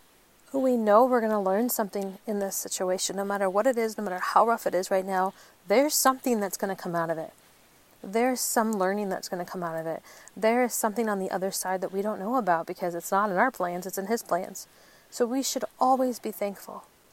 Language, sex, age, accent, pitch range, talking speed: English, female, 40-59, American, 185-220 Hz, 245 wpm